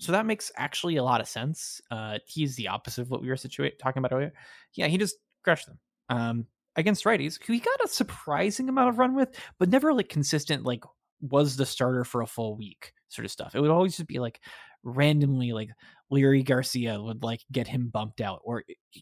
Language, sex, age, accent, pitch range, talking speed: English, male, 20-39, American, 125-165 Hz, 215 wpm